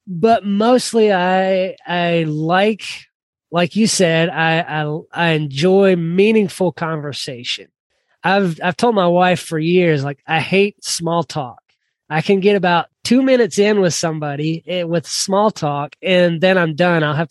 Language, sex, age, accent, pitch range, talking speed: English, male, 20-39, American, 155-185 Hz, 155 wpm